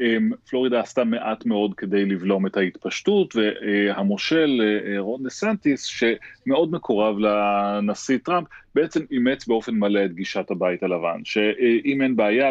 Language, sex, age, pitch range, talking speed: Hebrew, male, 30-49, 105-125 Hz, 130 wpm